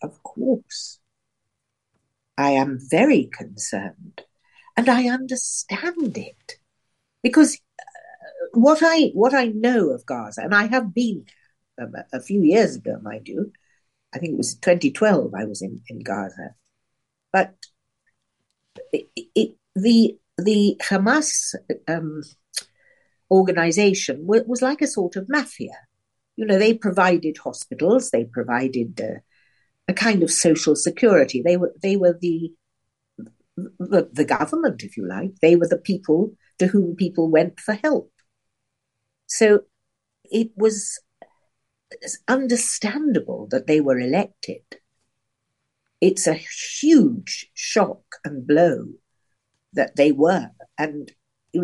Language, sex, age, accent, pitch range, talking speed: English, female, 60-79, British, 150-240 Hz, 125 wpm